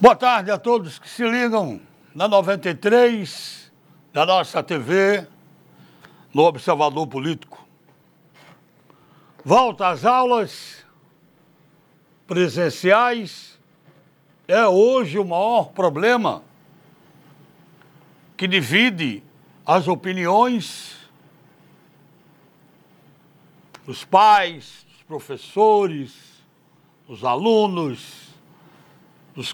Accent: Brazilian